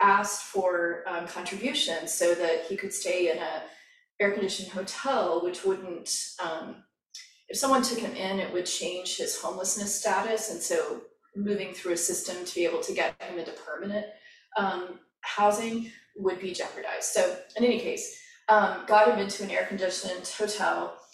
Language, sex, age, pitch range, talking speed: English, female, 30-49, 185-235 Hz, 165 wpm